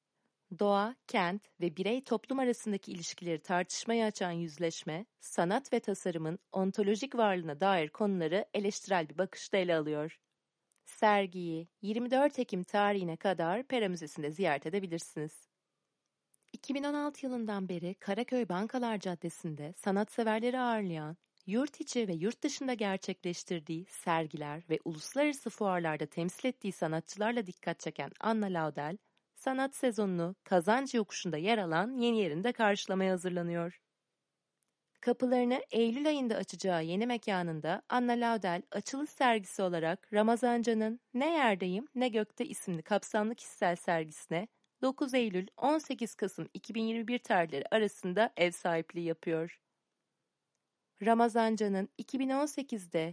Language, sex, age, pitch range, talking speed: Turkish, female, 30-49, 175-235 Hz, 105 wpm